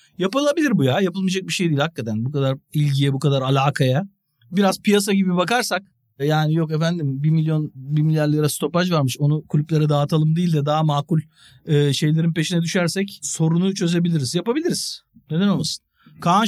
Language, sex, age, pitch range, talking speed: Turkish, male, 50-69, 145-200 Hz, 165 wpm